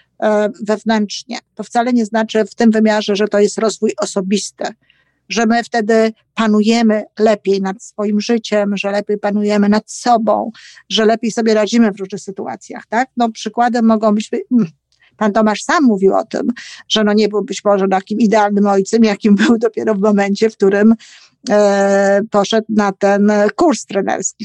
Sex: female